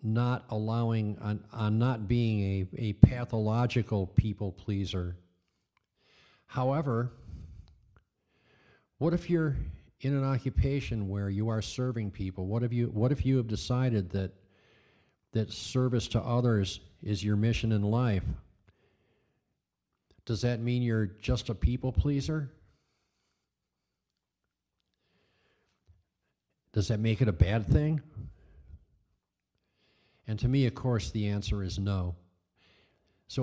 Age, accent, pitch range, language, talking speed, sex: 50-69, American, 95-120 Hz, English, 115 wpm, male